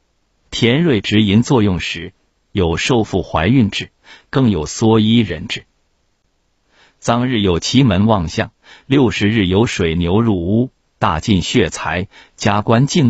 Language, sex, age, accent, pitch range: Chinese, male, 50-69, native, 85-115 Hz